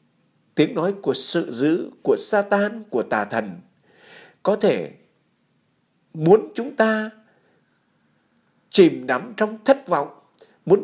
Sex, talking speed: male, 115 wpm